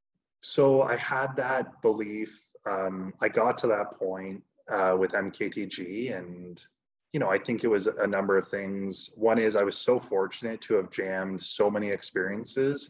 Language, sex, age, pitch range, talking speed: English, male, 20-39, 95-115 Hz, 170 wpm